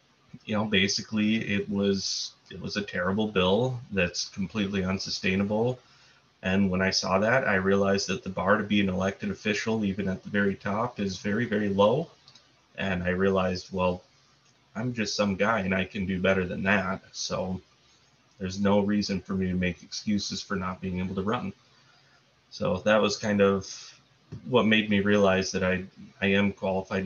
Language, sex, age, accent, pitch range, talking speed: English, male, 30-49, American, 95-105 Hz, 180 wpm